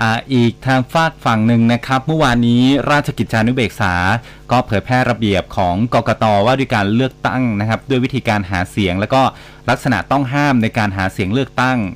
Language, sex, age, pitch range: Thai, male, 30-49, 105-130 Hz